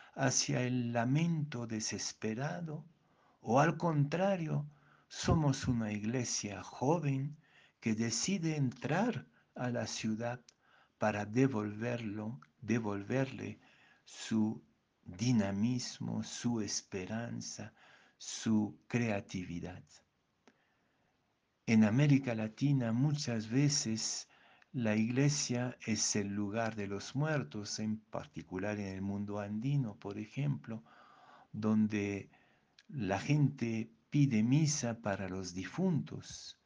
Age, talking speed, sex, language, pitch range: 60-79, 90 wpm, male, Spanish, 105-135 Hz